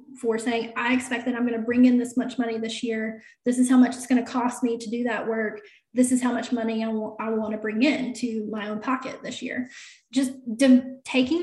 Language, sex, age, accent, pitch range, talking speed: English, female, 20-39, American, 230-260 Hz, 245 wpm